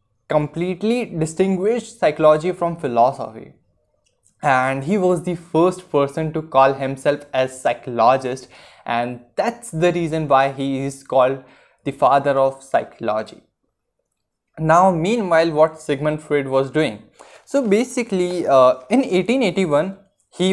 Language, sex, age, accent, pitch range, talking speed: Hindi, male, 20-39, native, 135-175 Hz, 125 wpm